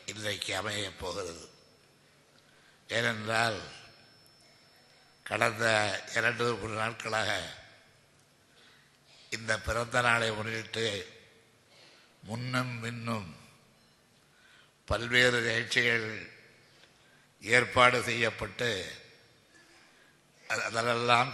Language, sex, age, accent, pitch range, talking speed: Tamil, male, 60-79, native, 110-120 Hz, 50 wpm